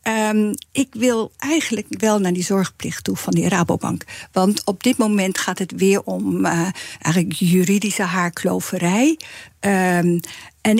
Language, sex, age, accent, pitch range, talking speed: Dutch, female, 50-69, Dutch, 180-225 Hz, 130 wpm